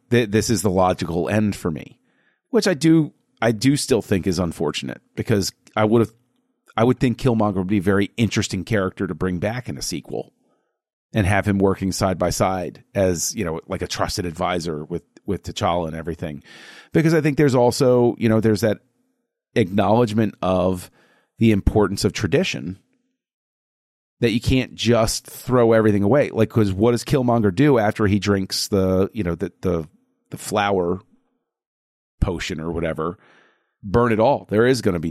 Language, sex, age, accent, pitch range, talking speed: English, male, 40-59, American, 95-120 Hz, 175 wpm